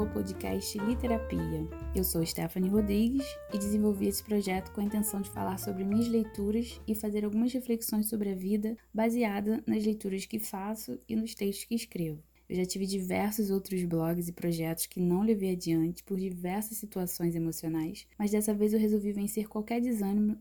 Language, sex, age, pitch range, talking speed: Portuguese, female, 10-29, 175-215 Hz, 175 wpm